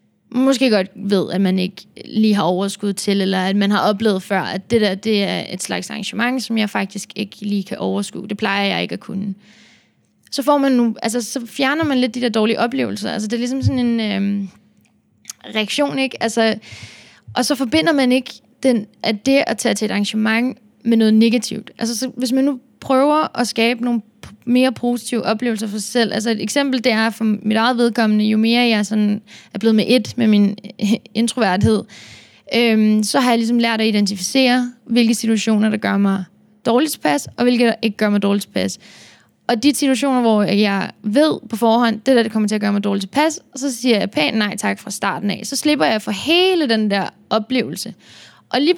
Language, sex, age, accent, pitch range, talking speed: Danish, female, 20-39, native, 210-250 Hz, 215 wpm